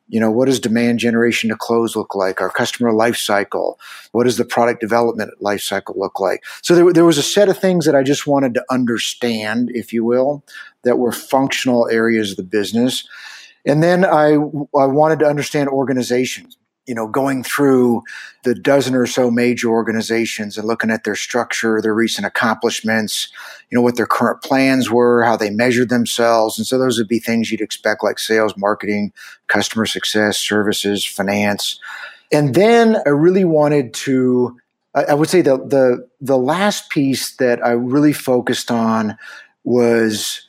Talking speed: 175 wpm